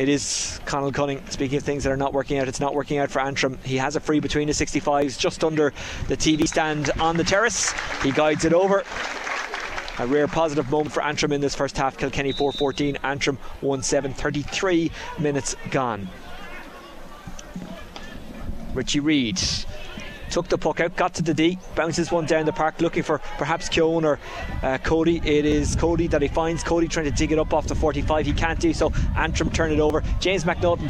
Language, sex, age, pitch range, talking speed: English, male, 20-39, 145-190 Hz, 195 wpm